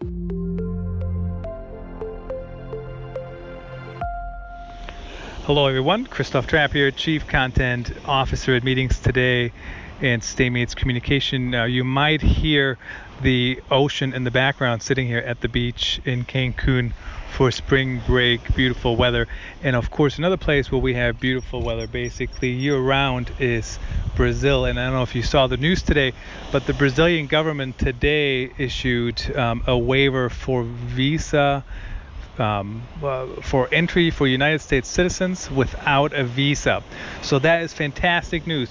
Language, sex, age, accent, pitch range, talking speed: English, male, 30-49, American, 120-140 Hz, 130 wpm